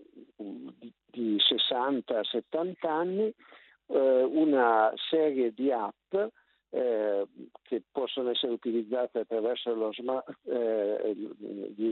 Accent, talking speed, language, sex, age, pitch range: native, 85 wpm, Italian, male, 50-69, 115-155 Hz